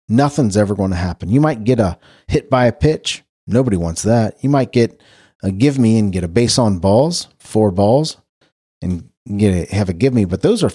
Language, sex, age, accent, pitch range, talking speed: English, male, 40-59, American, 95-140 Hz, 225 wpm